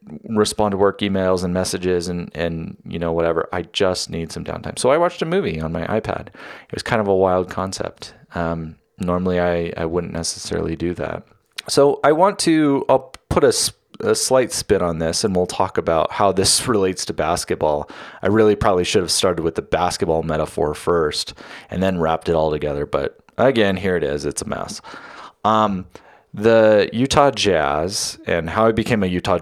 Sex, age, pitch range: male, 30-49, 80-110 Hz